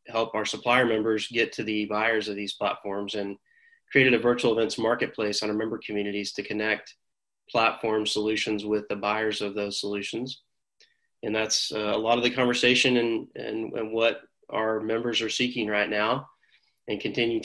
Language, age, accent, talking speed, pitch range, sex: English, 30-49, American, 175 wpm, 105-125 Hz, male